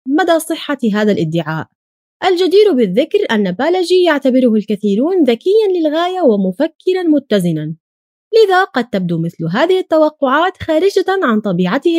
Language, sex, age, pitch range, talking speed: Arabic, female, 20-39, 200-335 Hz, 115 wpm